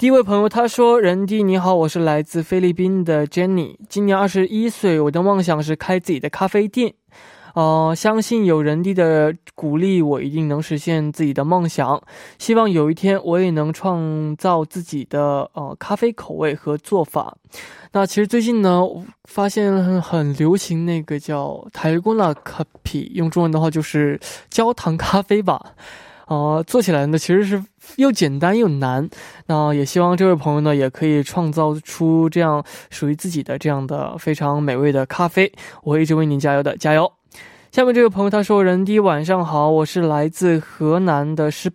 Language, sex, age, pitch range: Korean, male, 20-39, 150-195 Hz